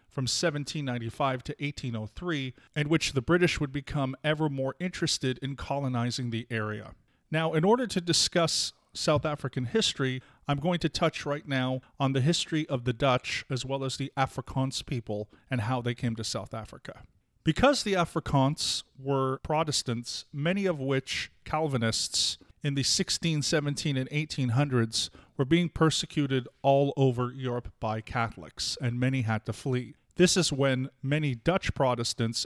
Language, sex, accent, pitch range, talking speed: English, male, American, 120-150 Hz, 155 wpm